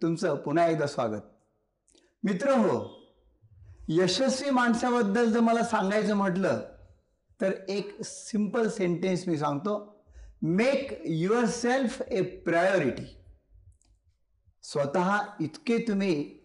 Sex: male